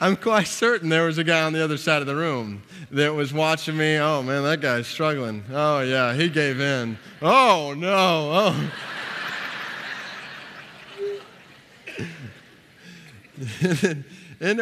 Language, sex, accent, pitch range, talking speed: English, male, American, 120-150 Hz, 125 wpm